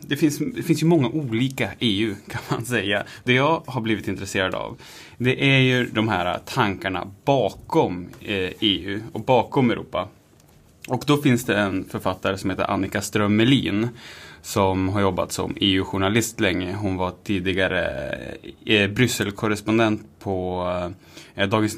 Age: 10-29